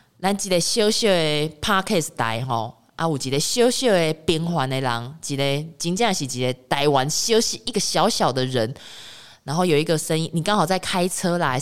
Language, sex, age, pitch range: Chinese, female, 20-39, 125-175 Hz